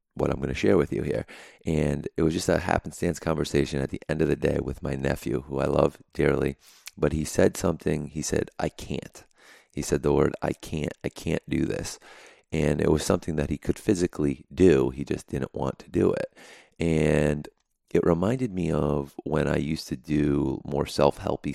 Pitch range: 70-80 Hz